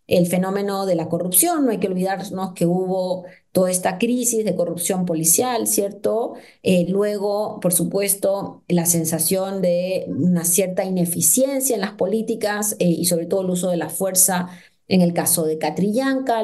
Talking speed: 165 wpm